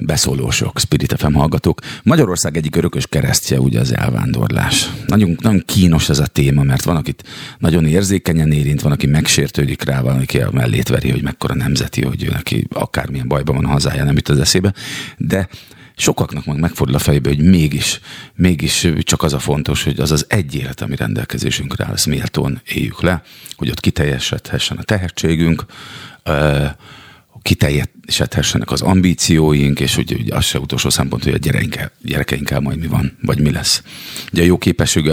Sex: male